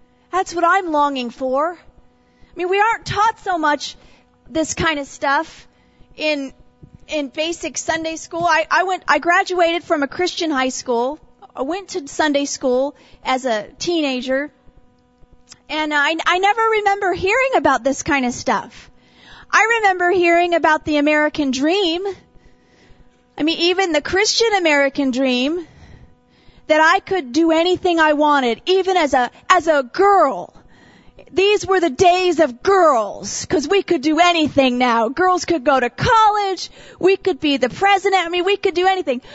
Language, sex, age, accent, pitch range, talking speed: English, female, 40-59, American, 290-375 Hz, 160 wpm